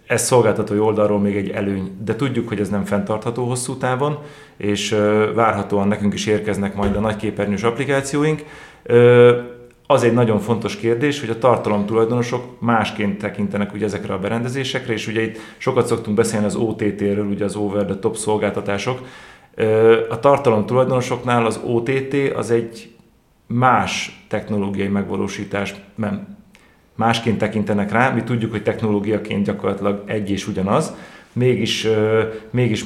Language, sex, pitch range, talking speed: Hungarian, male, 100-120 Hz, 140 wpm